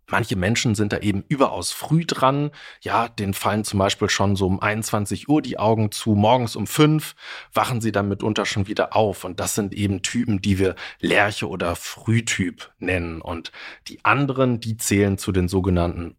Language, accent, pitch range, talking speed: German, German, 95-120 Hz, 185 wpm